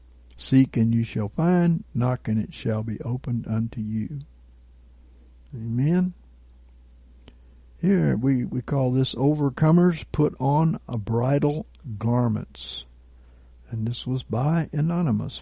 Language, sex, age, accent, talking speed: English, male, 60-79, American, 115 wpm